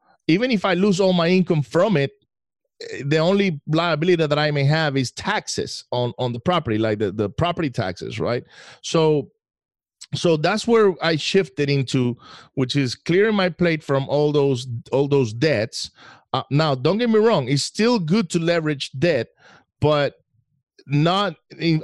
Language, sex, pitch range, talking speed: English, male, 130-170 Hz, 170 wpm